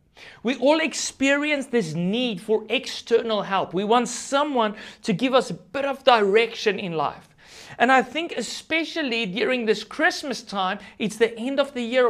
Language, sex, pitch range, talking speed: English, male, 165-225 Hz, 170 wpm